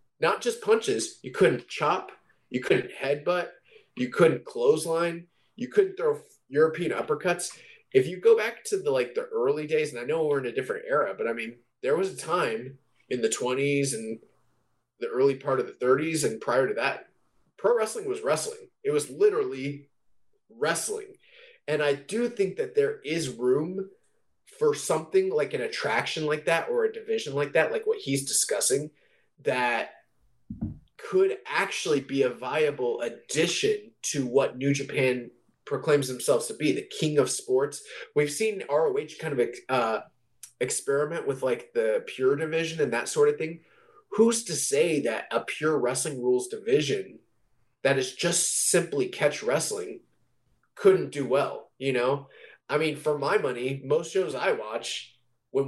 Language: English